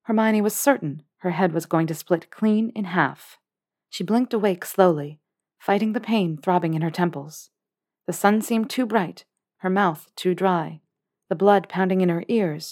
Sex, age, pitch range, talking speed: female, 40-59, 175-230 Hz, 180 wpm